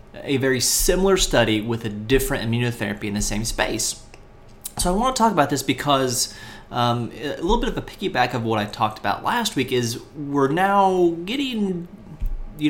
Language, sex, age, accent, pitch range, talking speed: English, male, 30-49, American, 110-140 Hz, 185 wpm